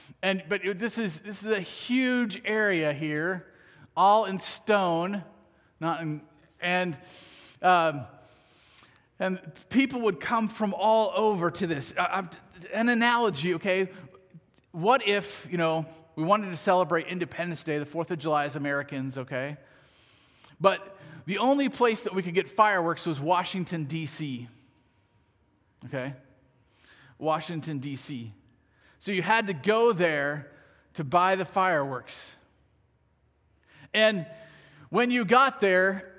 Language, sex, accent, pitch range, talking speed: English, male, American, 145-195 Hz, 130 wpm